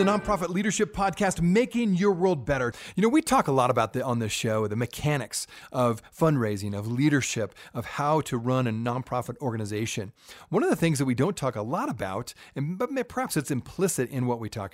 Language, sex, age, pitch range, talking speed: English, male, 30-49, 125-170 Hz, 210 wpm